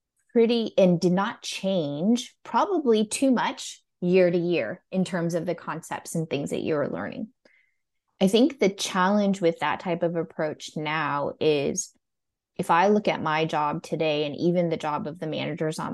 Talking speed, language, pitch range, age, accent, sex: 175 wpm, English, 155-185 Hz, 20-39, American, female